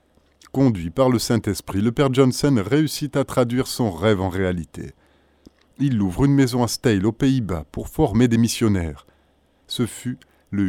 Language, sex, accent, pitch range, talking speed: French, male, French, 85-125 Hz, 165 wpm